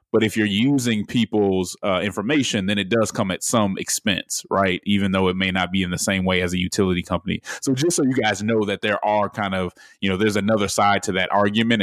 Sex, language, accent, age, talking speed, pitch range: male, English, American, 20-39, 245 wpm, 95-110 Hz